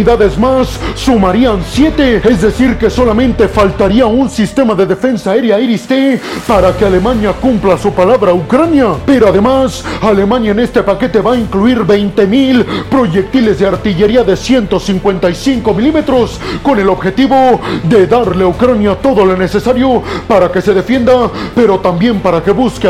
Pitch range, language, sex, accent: 200-250 Hz, Spanish, male, Mexican